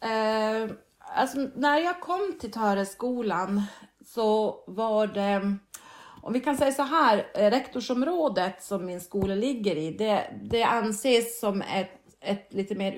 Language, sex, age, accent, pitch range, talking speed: Swedish, female, 30-49, native, 190-235 Hz, 140 wpm